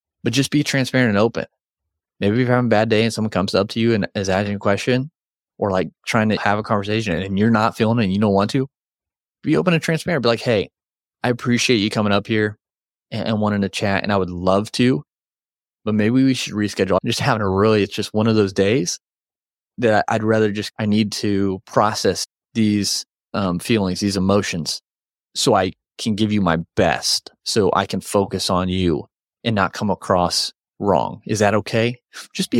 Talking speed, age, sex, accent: 215 wpm, 20-39, male, American